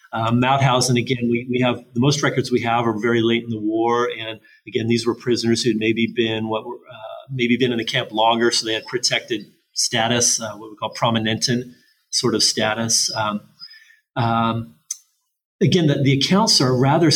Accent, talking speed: American, 180 wpm